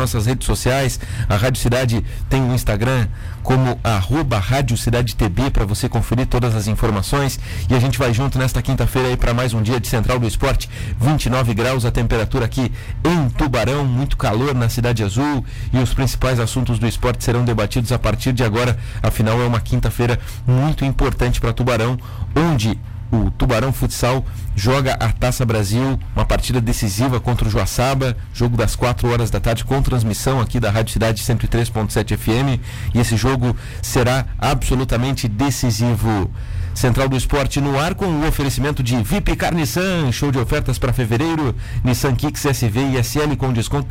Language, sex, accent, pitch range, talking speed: Portuguese, male, Brazilian, 110-130 Hz, 170 wpm